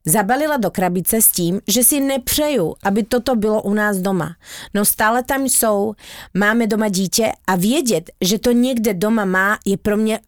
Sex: female